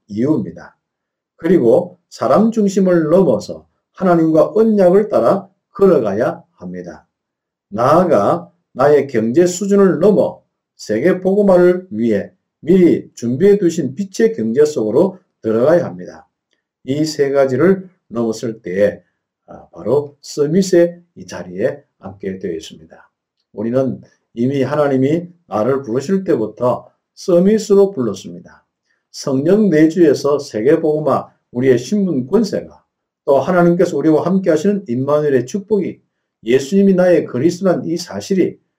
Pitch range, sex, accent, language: 135-195 Hz, male, native, Korean